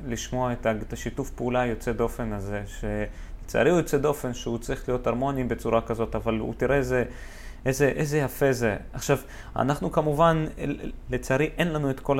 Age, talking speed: 20-39, 160 wpm